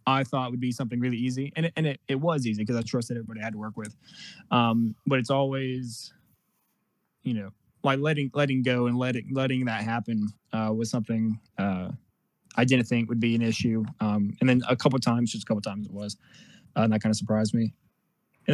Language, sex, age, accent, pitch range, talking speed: English, male, 20-39, American, 115-130 Hz, 230 wpm